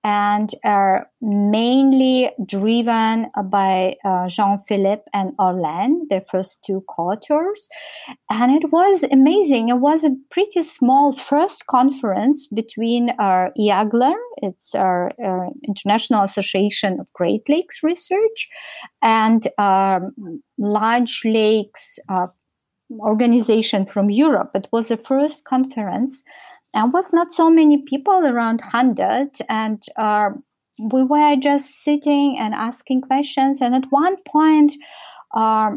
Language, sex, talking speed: English, female, 125 wpm